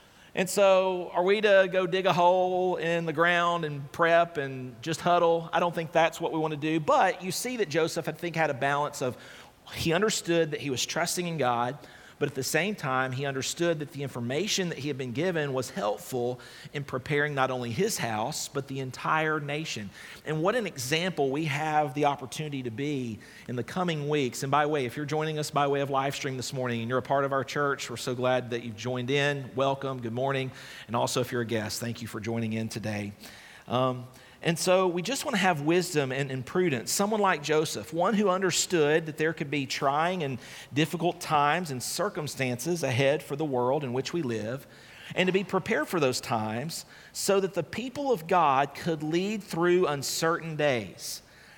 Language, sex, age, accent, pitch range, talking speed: English, male, 40-59, American, 125-170 Hz, 215 wpm